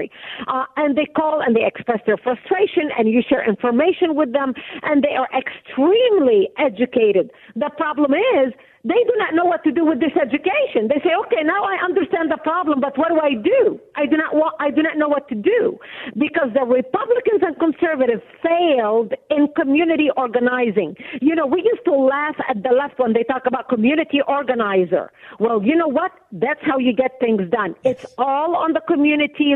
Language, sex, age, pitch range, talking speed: English, female, 50-69, 255-315 Hz, 195 wpm